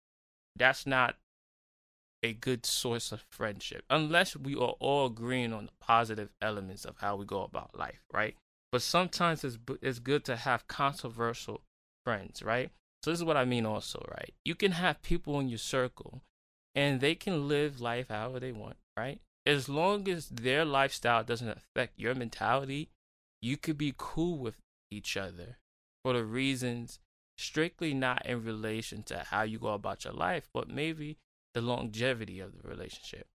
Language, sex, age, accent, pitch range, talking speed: English, male, 20-39, American, 110-145 Hz, 170 wpm